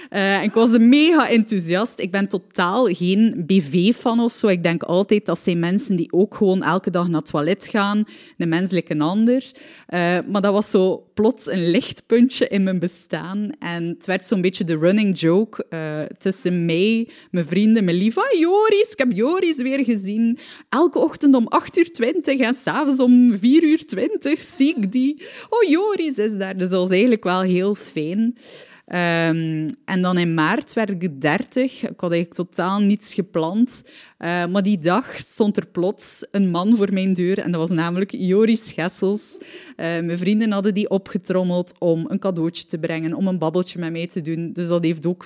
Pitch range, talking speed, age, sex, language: 175-230 Hz, 185 wpm, 20-39, female, Dutch